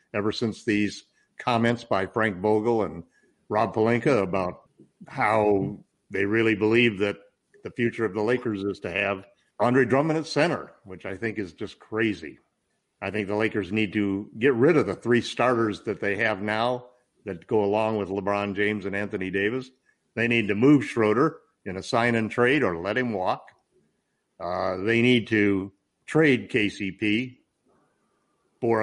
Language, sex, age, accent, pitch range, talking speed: English, male, 50-69, American, 105-120 Hz, 160 wpm